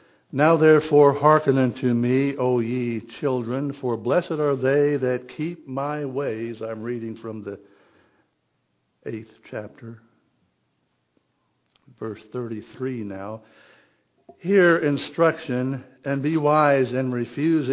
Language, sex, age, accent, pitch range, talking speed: English, male, 60-79, American, 115-150 Hz, 110 wpm